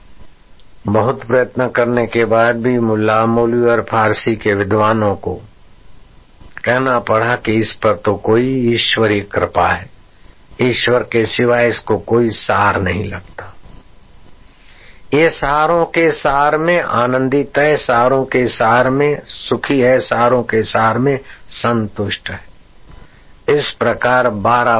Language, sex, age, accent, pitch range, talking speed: Hindi, male, 60-79, native, 110-135 Hz, 125 wpm